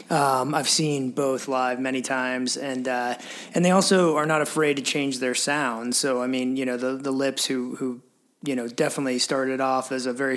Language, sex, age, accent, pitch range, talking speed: English, male, 20-39, American, 130-145 Hz, 215 wpm